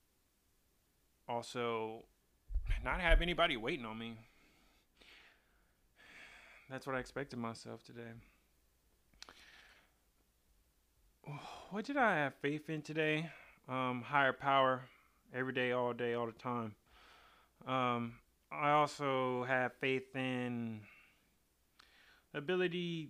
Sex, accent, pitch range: male, American, 115-140 Hz